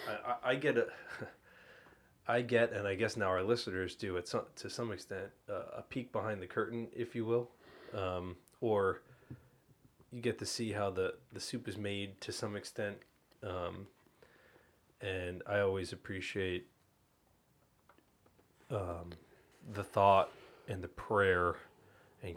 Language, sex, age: English, male, 30-49